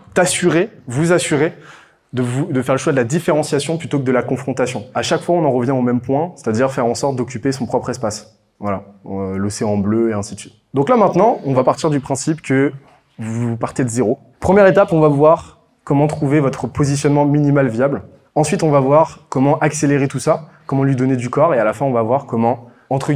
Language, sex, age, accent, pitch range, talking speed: French, male, 20-39, French, 120-145 Hz, 230 wpm